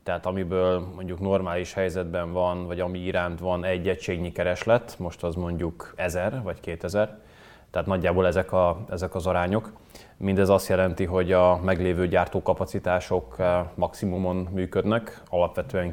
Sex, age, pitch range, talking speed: male, 20-39, 90-95 Hz, 135 wpm